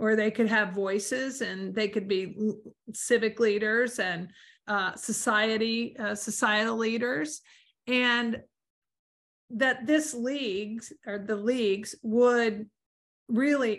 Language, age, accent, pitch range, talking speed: English, 50-69, American, 215-245 Hz, 115 wpm